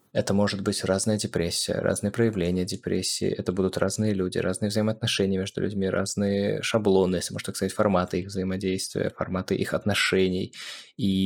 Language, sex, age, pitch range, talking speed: Russian, male, 20-39, 95-105 Hz, 155 wpm